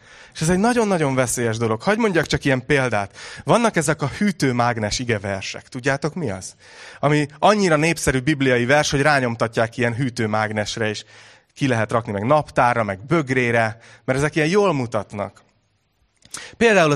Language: Hungarian